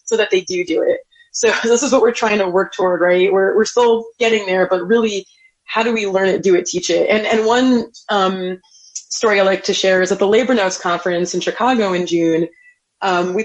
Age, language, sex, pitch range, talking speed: 20-39, English, female, 185-225 Hz, 235 wpm